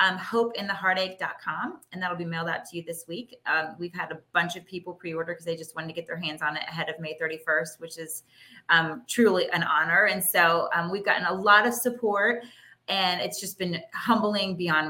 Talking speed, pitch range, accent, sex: 220 wpm, 170-210 Hz, American, female